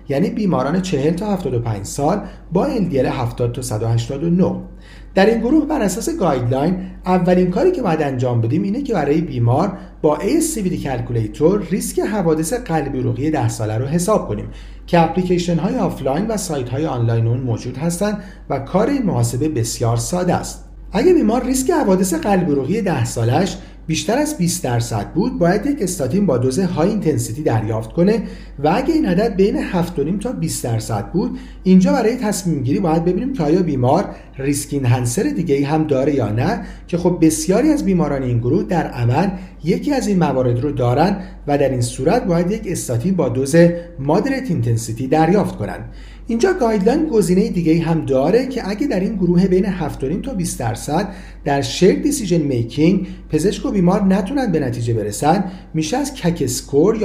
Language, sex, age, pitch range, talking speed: Persian, male, 40-59, 130-195 Hz, 170 wpm